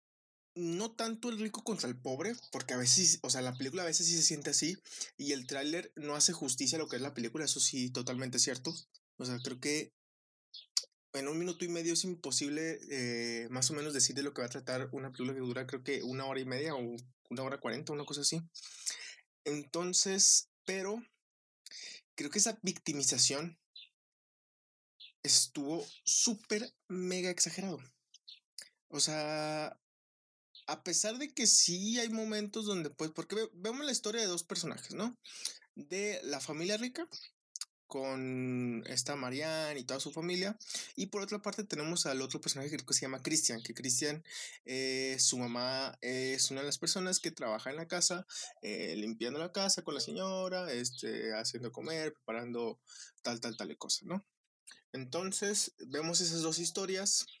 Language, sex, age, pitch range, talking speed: Spanish, male, 30-49, 130-185 Hz, 170 wpm